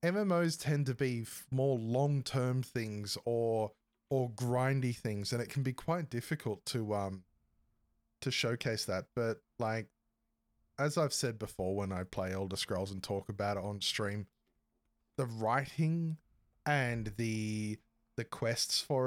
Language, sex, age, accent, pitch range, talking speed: English, male, 20-39, Australian, 110-130 Hz, 145 wpm